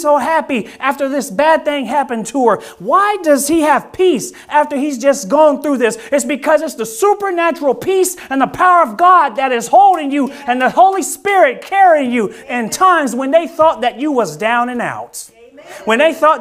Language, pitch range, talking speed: English, 245-330 Hz, 200 wpm